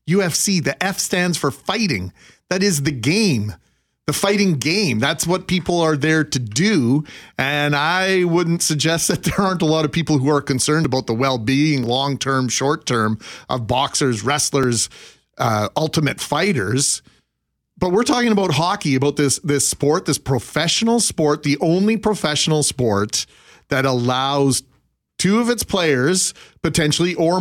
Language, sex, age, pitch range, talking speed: English, male, 40-59, 130-180 Hz, 150 wpm